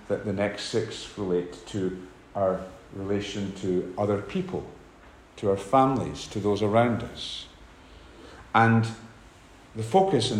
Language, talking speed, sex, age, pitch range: English, 125 wpm, male, 50-69, 100-130 Hz